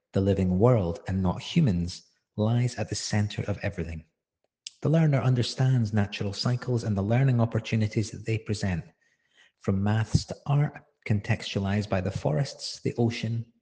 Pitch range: 100-130 Hz